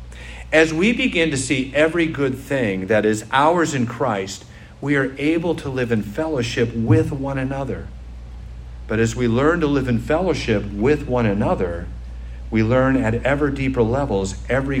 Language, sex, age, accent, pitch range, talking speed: English, male, 50-69, American, 85-135 Hz, 165 wpm